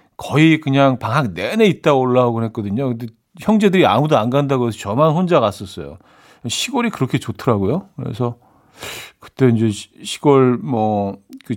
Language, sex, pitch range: Korean, male, 115-155 Hz